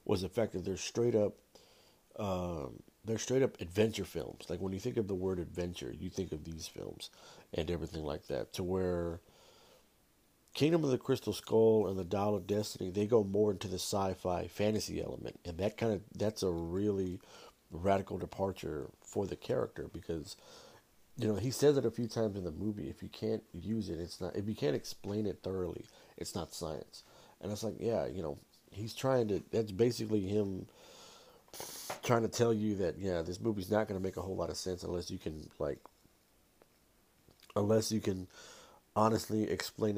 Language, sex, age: English, male, 50-69